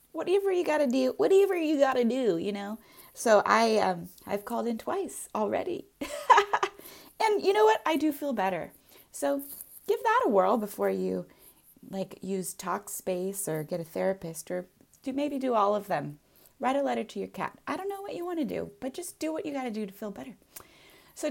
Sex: female